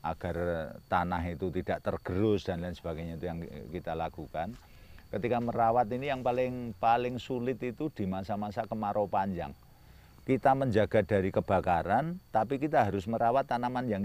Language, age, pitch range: Indonesian, 40-59, 90-115 Hz